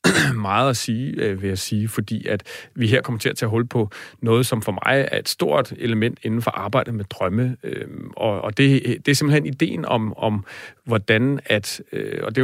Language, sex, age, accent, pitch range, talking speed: Danish, male, 40-59, native, 110-130 Hz, 220 wpm